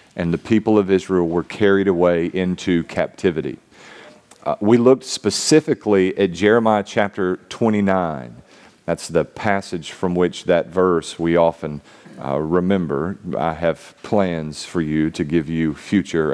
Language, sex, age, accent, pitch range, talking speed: English, male, 40-59, American, 85-115 Hz, 140 wpm